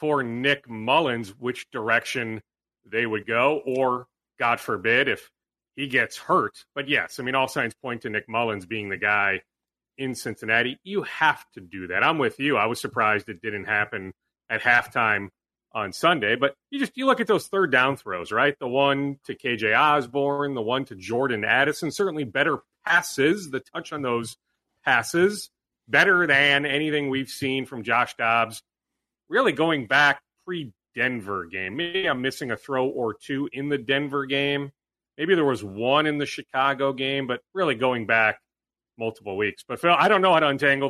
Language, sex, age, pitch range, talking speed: English, male, 30-49, 115-150 Hz, 180 wpm